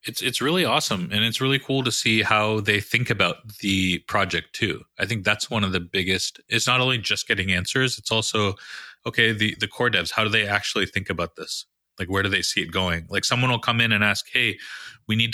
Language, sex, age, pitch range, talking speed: English, male, 30-49, 95-115 Hz, 240 wpm